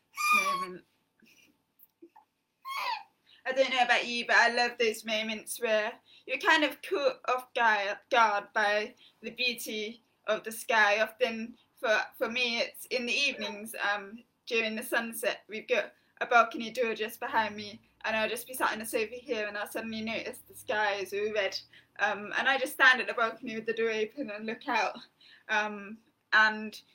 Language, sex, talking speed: English, female, 175 wpm